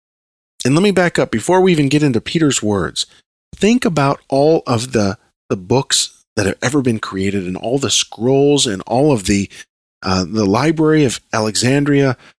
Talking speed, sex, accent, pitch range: 180 wpm, male, American, 100-145 Hz